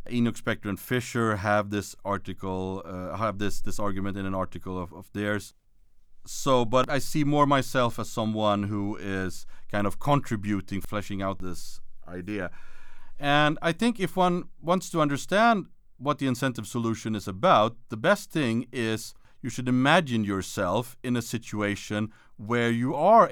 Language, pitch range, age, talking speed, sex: English, 100-135 Hz, 40-59, 160 wpm, male